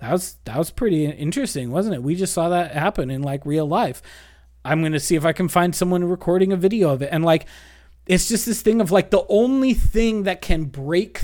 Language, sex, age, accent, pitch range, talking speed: English, male, 30-49, American, 140-220 Hz, 240 wpm